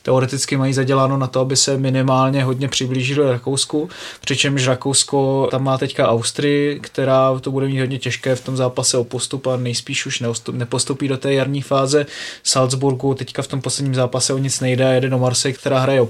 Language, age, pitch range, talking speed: Czech, 20-39, 130-145 Hz, 195 wpm